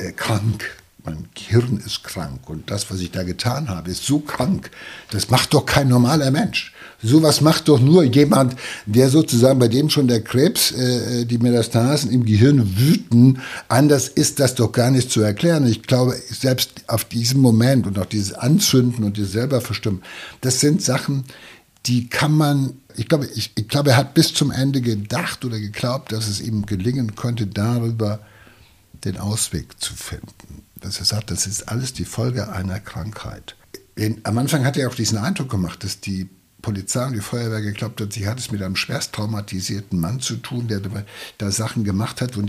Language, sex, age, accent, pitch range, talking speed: German, male, 60-79, German, 100-125 Hz, 185 wpm